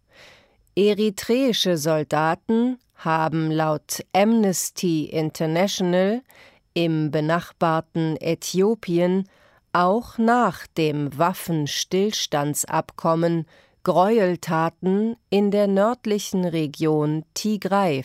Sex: female